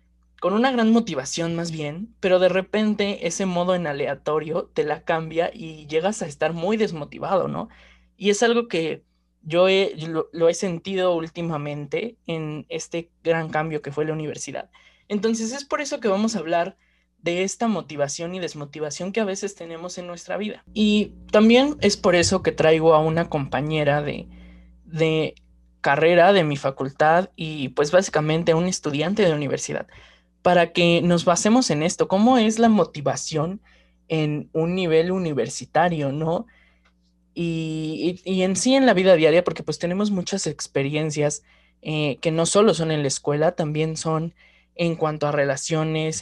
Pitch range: 150-180 Hz